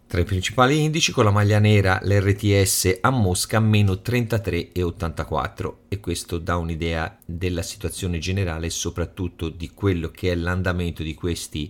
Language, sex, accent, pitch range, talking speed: Italian, male, native, 90-115 Hz, 145 wpm